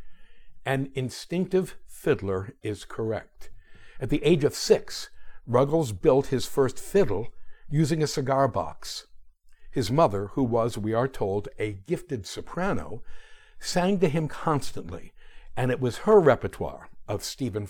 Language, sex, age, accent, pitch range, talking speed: English, male, 60-79, American, 120-180 Hz, 135 wpm